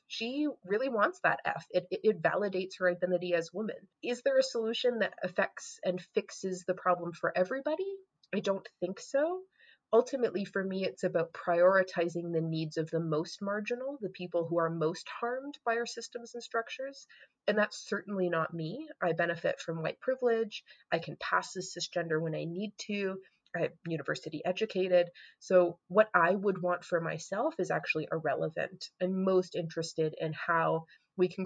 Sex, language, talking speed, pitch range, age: female, English, 175 wpm, 165-205 Hz, 30-49